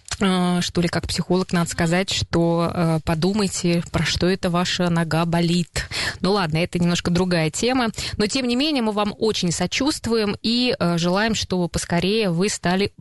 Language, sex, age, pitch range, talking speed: Russian, female, 20-39, 170-210 Hz, 165 wpm